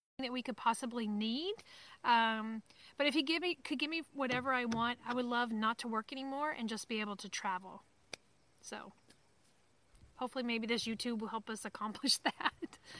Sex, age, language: female, 30-49, English